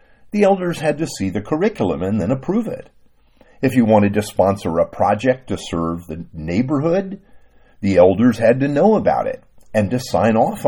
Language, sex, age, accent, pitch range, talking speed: English, male, 50-69, American, 95-155 Hz, 185 wpm